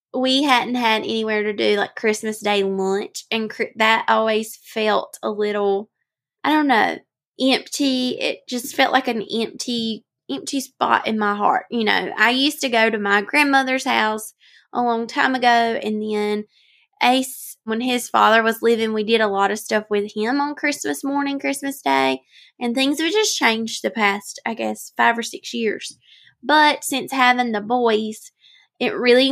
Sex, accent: female, American